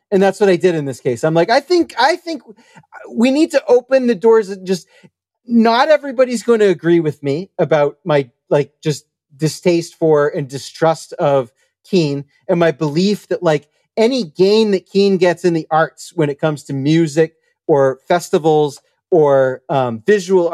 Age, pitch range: 40-59, 160-220 Hz